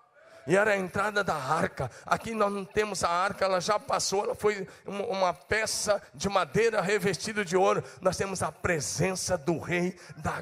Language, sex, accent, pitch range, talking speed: Portuguese, male, Brazilian, 165-205 Hz, 180 wpm